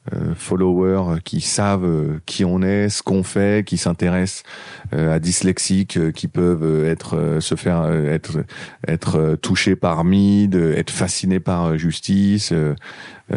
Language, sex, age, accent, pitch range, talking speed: French, male, 40-59, French, 80-95 Hz, 170 wpm